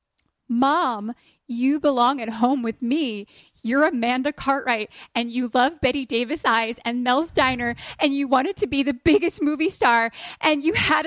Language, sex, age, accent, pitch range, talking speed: English, female, 20-39, American, 180-265 Hz, 170 wpm